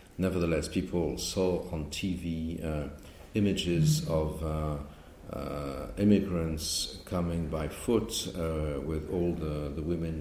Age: 50-69